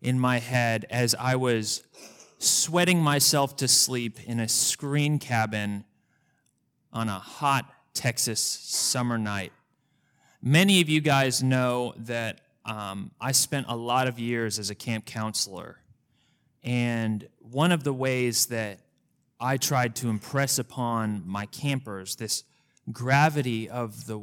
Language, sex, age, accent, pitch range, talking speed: English, male, 20-39, American, 110-135 Hz, 135 wpm